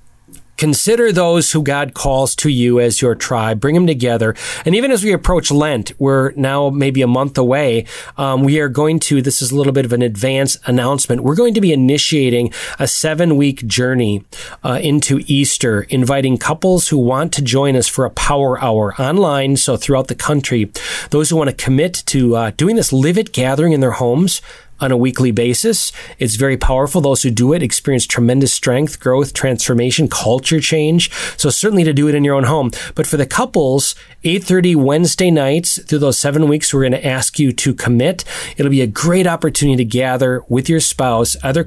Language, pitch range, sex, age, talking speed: English, 125-155 Hz, male, 30-49, 195 wpm